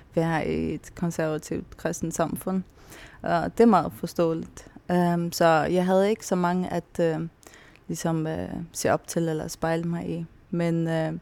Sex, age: female, 20-39